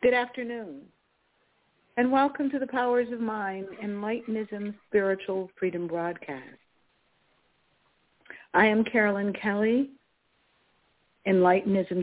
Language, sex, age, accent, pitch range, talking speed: English, female, 60-79, American, 185-245 Hz, 90 wpm